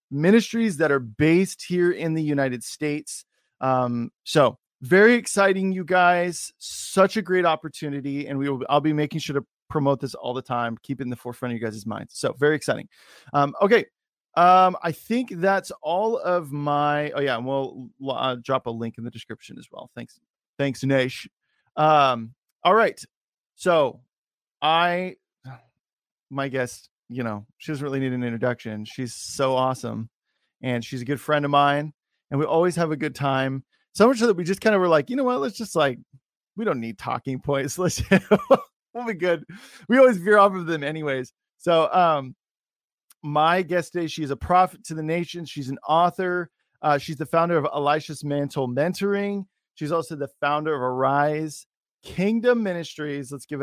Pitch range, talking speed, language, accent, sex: 130-175 Hz, 185 wpm, English, American, male